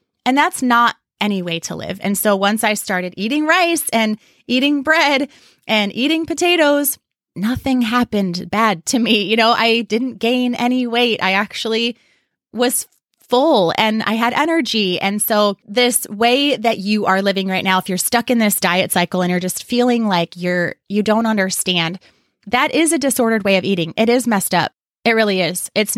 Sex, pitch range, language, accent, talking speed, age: female, 190-250 Hz, English, American, 185 wpm, 20-39